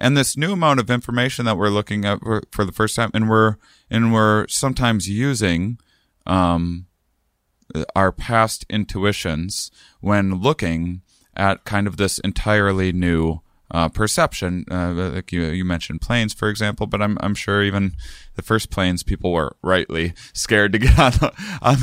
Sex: male